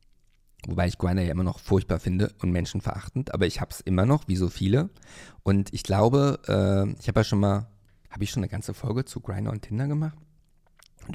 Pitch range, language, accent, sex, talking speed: 100-130 Hz, German, German, male, 215 wpm